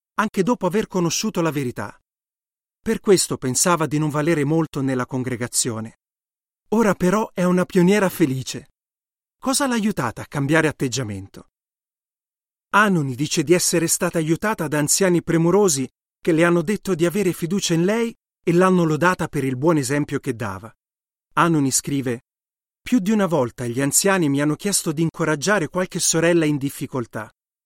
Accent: native